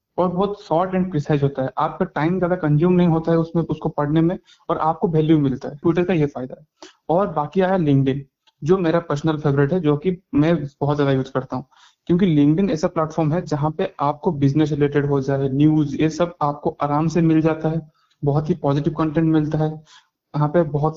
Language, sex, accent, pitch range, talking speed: Hindi, male, native, 145-165 Hz, 105 wpm